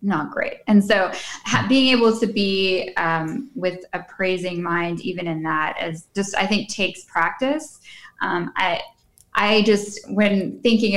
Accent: American